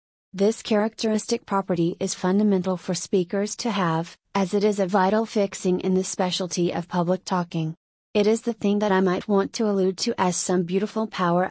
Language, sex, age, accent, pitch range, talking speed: English, female, 30-49, American, 180-205 Hz, 190 wpm